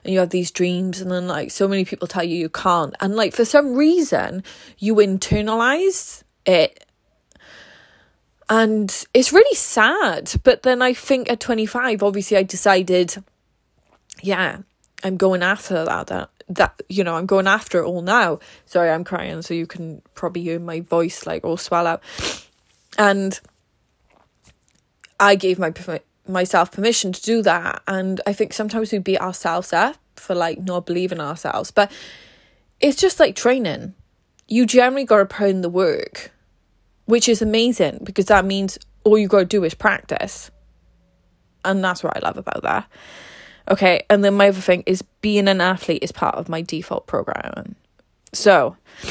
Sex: female